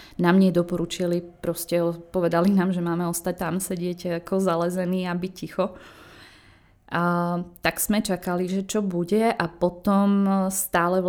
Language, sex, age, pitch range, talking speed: Czech, female, 20-39, 175-190 Hz, 140 wpm